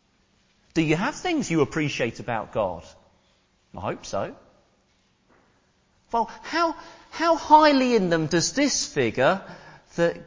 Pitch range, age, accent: 145-240 Hz, 40-59, British